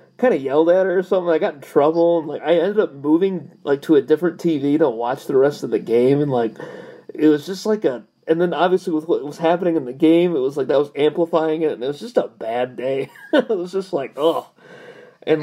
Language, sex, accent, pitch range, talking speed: English, male, American, 135-180 Hz, 255 wpm